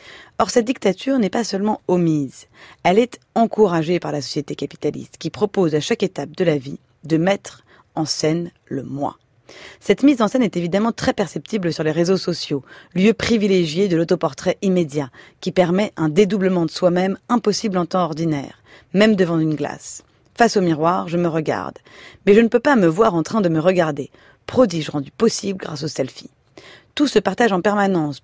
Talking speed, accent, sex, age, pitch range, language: 190 wpm, French, female, 30-49, 160-215 Hz, French